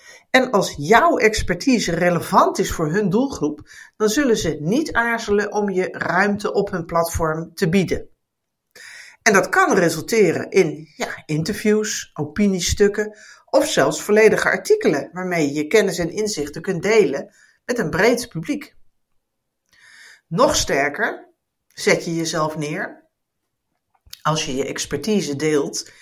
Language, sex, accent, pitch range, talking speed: Dutch, female, Dutch, 160-240 Hz, 130 wpm